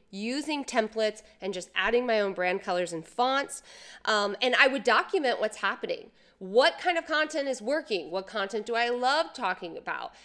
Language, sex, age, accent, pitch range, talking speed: English, female, 30-49, American, 200-280 Hz, 180 wpm